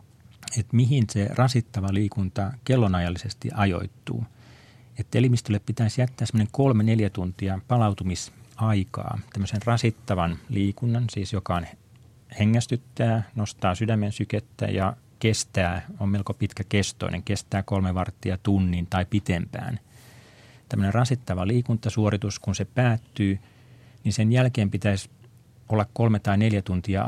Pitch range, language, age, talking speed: 95-115 Hz, Finnish, 40-59, 115 wpm